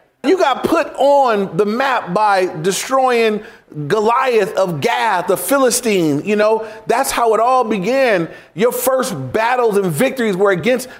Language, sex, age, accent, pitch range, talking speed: English, male, 30-49, American, 170-225 Hz, 145 wpm